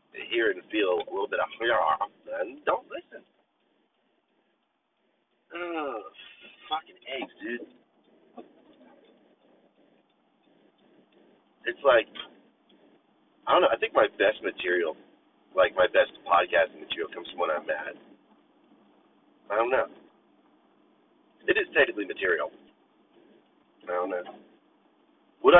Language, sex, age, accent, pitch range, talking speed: English, male, 40-59, American, 340-365 Hz, 110 wpm